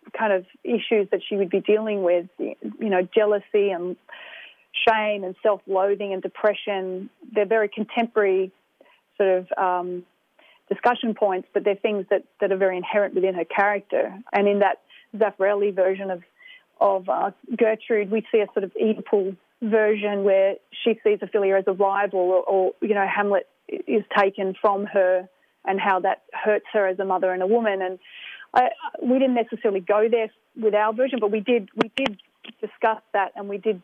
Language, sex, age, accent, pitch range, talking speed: English, female, 30-49, Australian, 195-230 Hz, 175 wpm